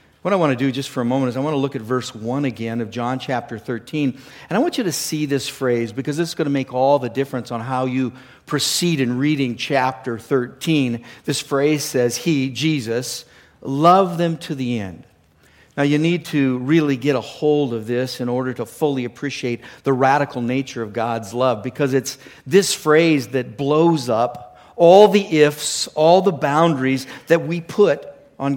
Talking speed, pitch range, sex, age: 200 wpm, 125-150 Hz, male, 50-69